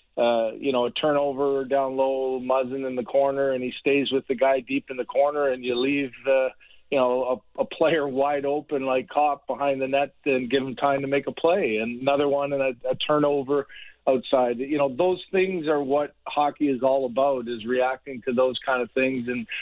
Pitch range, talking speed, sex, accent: 125-145 Hz, 215 wpm, male, American